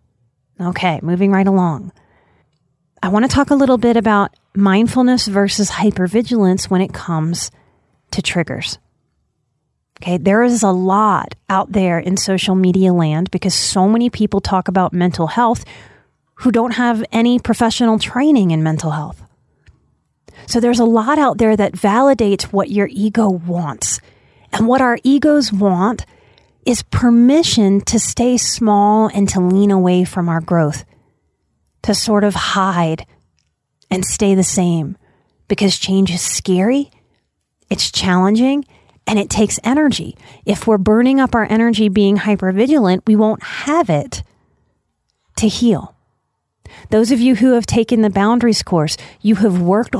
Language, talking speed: English, 145 wpm